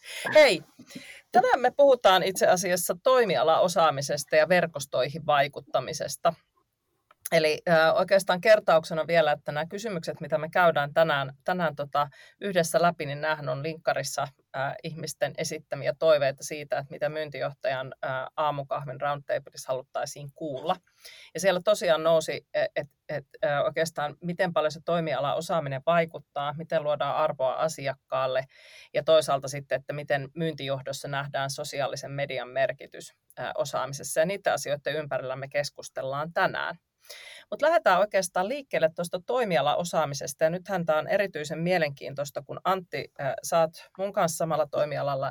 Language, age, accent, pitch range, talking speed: Finnish, 30-49, native, 145-175 Hz, 130 wpm